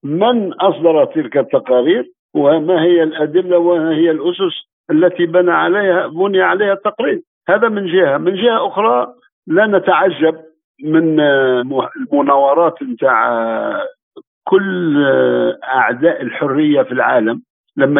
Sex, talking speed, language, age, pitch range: male, 105 wpm, Arabic, 50-69, 150-210 Hz